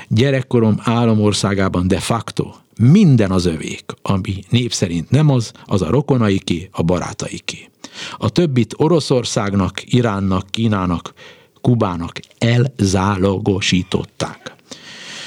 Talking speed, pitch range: 90 wpm, 95-125 Hz